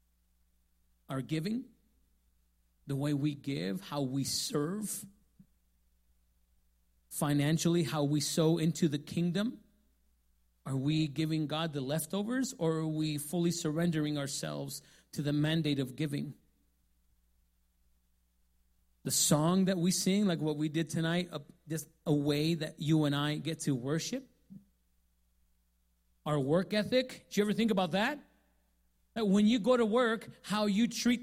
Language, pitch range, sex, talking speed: English, 125-180 Hz, male, 135 wpm